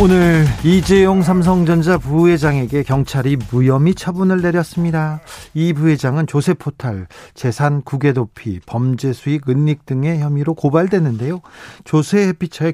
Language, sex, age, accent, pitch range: Korean, male, 40-59, native, 145-195 Hz